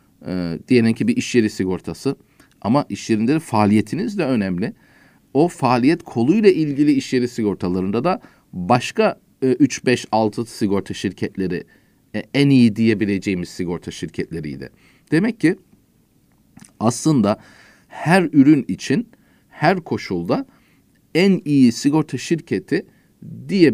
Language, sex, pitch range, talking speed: Turkish, male, 100-145 Hz, 115 wpm